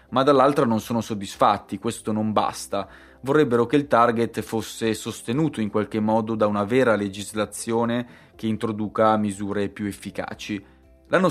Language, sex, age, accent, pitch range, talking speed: Italian, male, 20-39, native, 105-115 Hz, 145 wpm